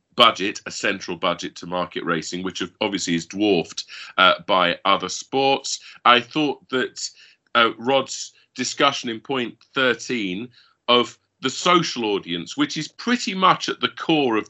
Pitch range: 95-130 Hz